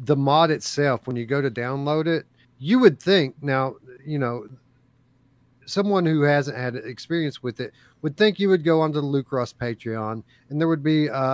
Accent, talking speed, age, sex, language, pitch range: American, 190 wpm, 40-59, male, English, 125-150 Hz